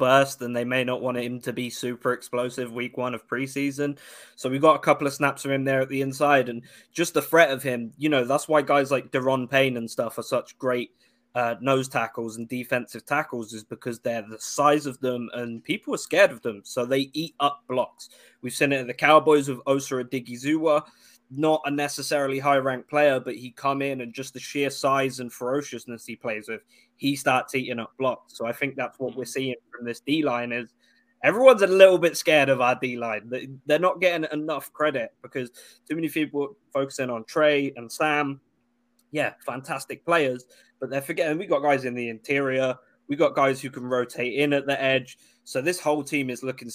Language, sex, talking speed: English, male, 210 wpm